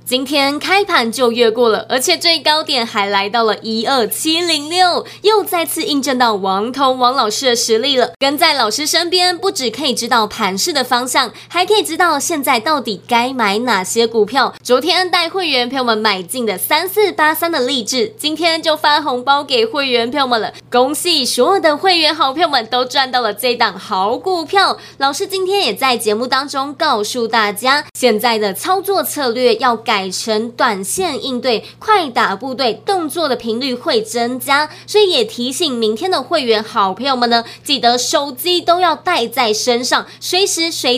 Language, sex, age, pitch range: Chinese, female, 20-39, 235-335 Hz